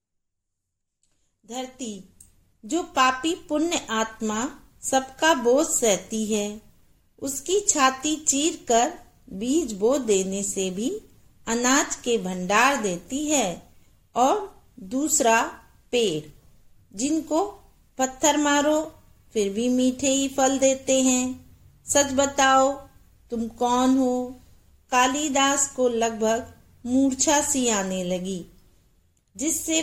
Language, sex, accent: English, female, Indian